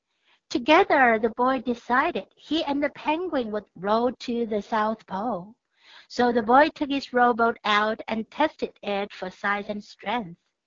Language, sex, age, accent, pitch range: Chinese, female, 60-79, American, 220-275 Hz